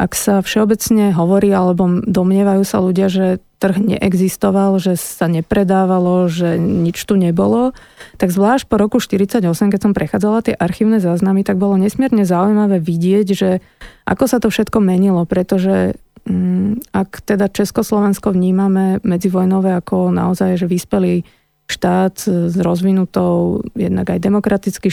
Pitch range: 180-205 Hz